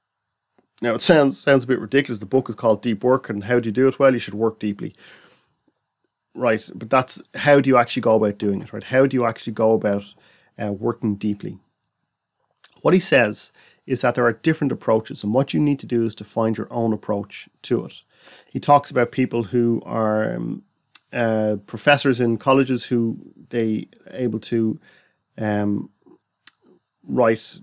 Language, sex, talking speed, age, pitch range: English, male, 185 wpm, 30-49, 105-125 Hz